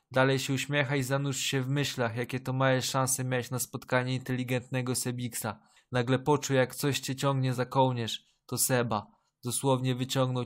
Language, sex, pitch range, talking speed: Polish, male, 125-145 Hz, 165 wpm